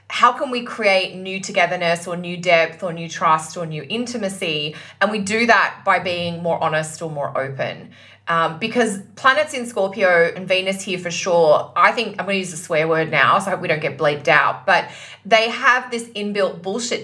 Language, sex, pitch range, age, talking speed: English, female, 170-210 Hz, 20-39, 205 wpm